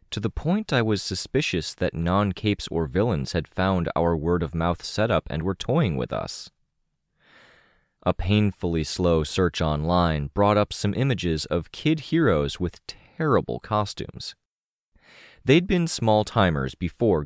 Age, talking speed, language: 30-49, 135 wpm, English